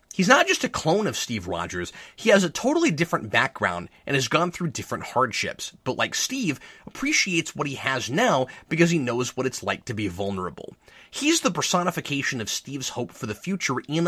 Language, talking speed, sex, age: English, 200 wpm, male, 30-49